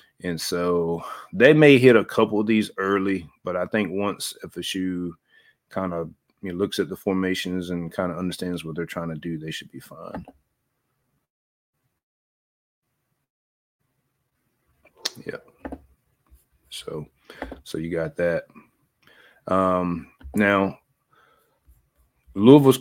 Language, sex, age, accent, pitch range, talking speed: English, male, 30-49, American, 85-105 Hz, 120 wpm